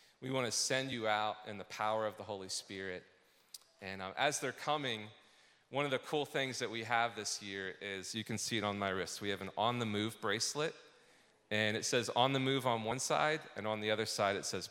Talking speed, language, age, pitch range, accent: 240 wpm, English, 30-49, 95-115 Hz, American